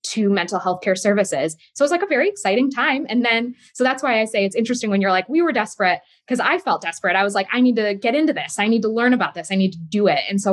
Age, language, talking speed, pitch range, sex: 20-39, English, 310 wpm, 195-260 Hz, female